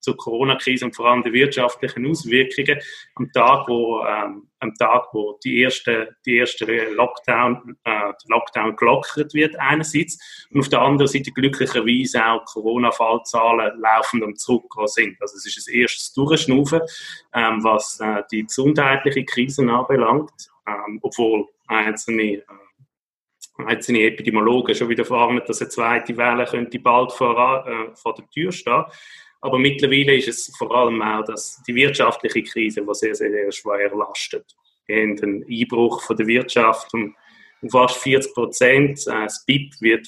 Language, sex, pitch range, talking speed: German, male, 110-140 Hz, 140 wpm